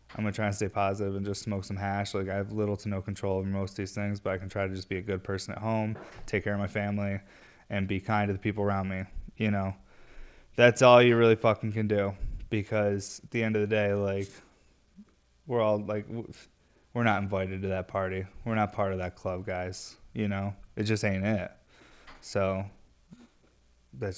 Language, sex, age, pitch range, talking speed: English, male, 20-39, 100-115 Hz, 225 wpm